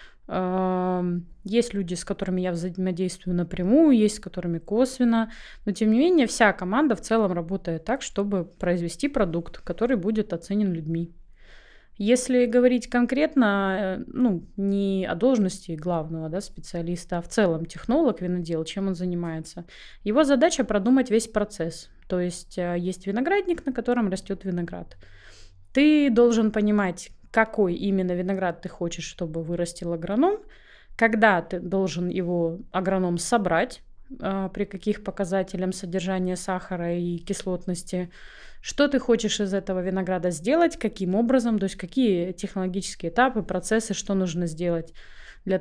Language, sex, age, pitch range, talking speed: Russian, female, 20-39, 175-230 Hz, 135 wpm